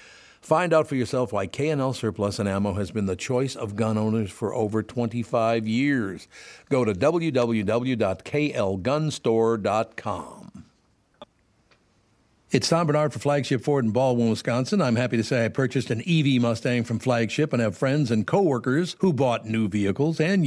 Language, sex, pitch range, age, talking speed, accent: English, male, 110-145 Hz, 60-79, 155 wpm, American